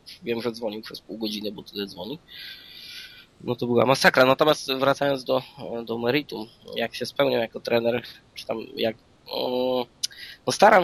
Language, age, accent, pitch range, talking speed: Polish, 20-39, native, 125-145 Hz, 150 wpm